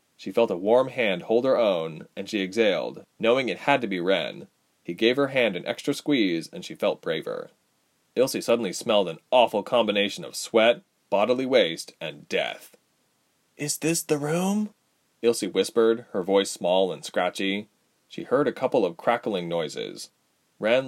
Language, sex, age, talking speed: English, male, 30-49, 170 wpm